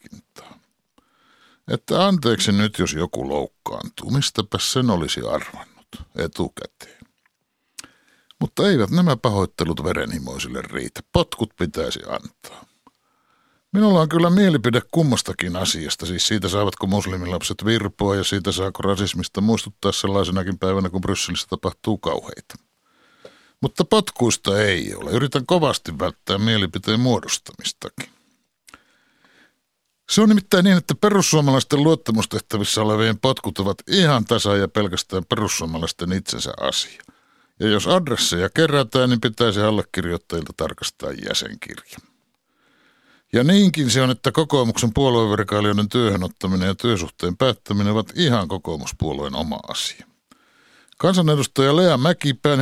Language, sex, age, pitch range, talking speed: Finnish, male, 60-79, 95-135 Hz, 110 wpm